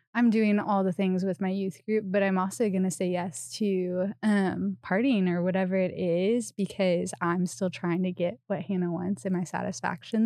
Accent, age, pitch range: American, 20-39, 175-195 Hz